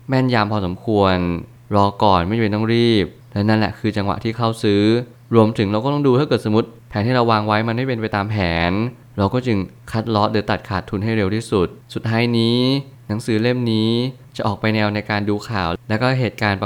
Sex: male